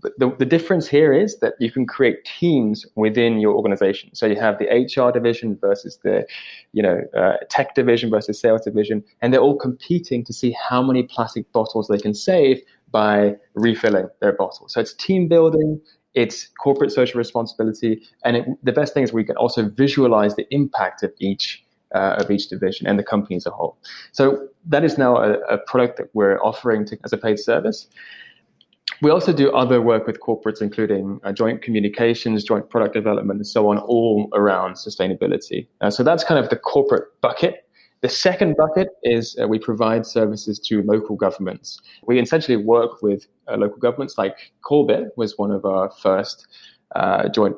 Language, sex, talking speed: English, male, 180 wpm